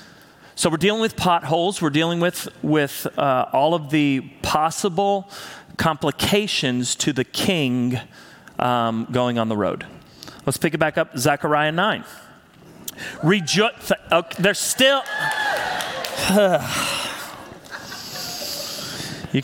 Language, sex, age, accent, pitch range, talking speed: English, male, 40-59, American, 135-195 Hz, 105 wpm